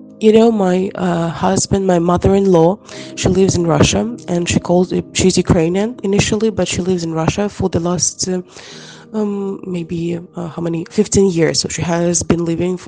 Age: 20-39